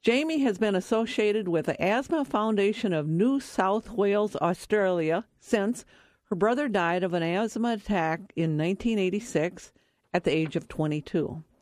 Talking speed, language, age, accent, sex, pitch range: 145 wpm, English, 50-69, American, female, 170-220 Hz